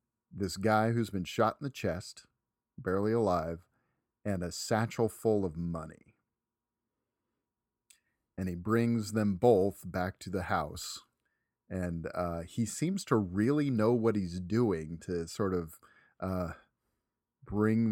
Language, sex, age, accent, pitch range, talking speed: English, male, 30-49, American, 90-120 Hz, 135 wpm